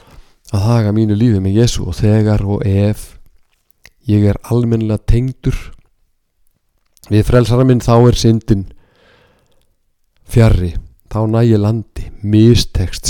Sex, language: male, English